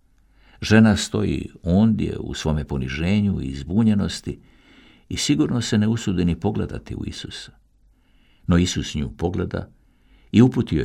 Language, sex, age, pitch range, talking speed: Croatian, male, 60-79, 75-110 Hz, 125 wpm